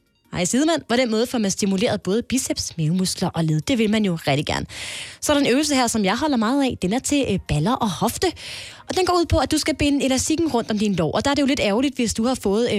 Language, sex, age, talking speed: Danish, female, 20-39, 275 wpm